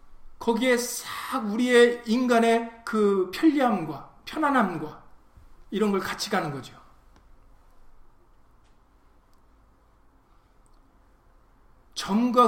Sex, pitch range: male, 200-280 Hz